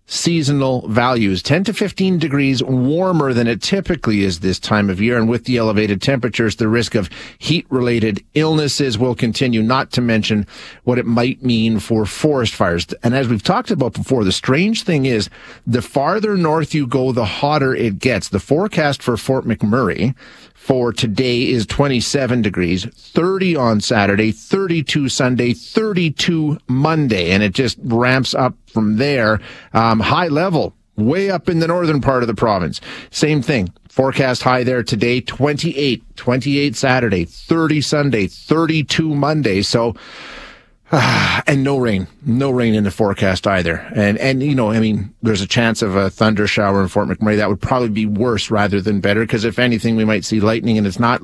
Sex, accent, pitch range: male, American, 105-135 Hz